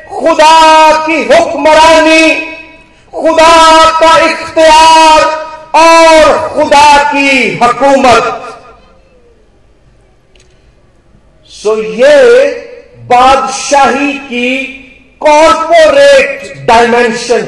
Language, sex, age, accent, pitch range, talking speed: Hindi, male, 50-69, native, 300-335 Hz, 55 wpm